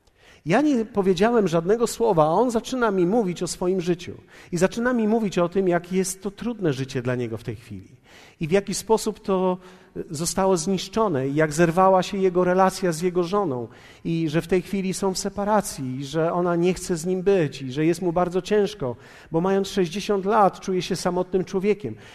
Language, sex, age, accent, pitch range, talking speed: Polish, male, 40-59, native, 160-200 Hz, 205 wpm